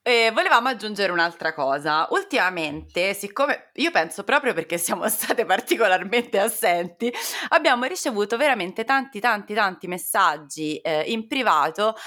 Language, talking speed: Italian, 125 wpm